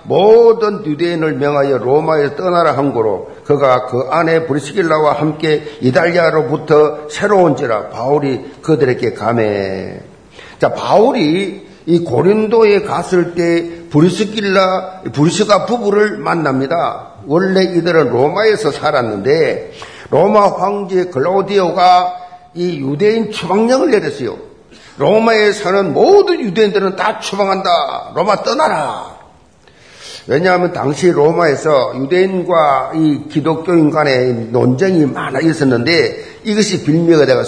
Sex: male